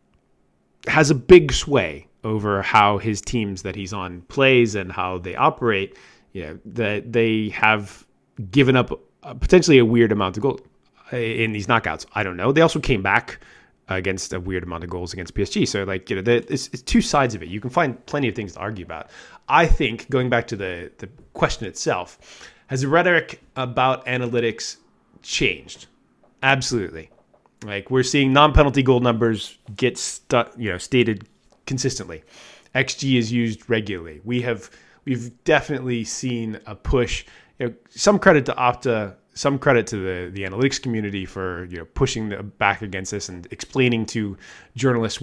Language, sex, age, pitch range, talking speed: English, male, 20-39, 100-130 Hz, 165 wpm